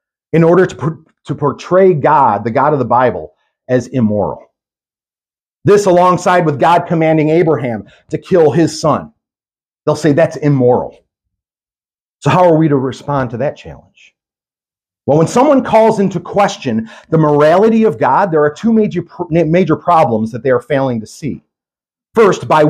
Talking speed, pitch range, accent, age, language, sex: 160 wpm, 140-185 Hz, American, 40-59, English, male